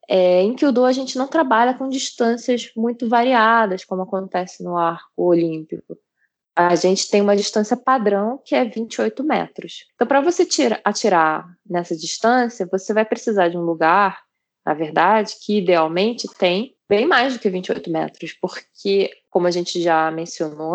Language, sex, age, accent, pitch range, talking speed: Portuguese, female, 20-39, Brazilian, 170-220 Hz, 160 wpm